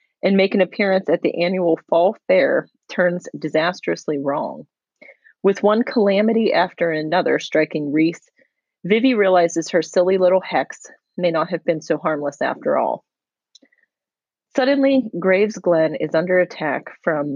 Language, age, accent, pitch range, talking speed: English, 30-49, American, 160-225 Hz, 140 wpm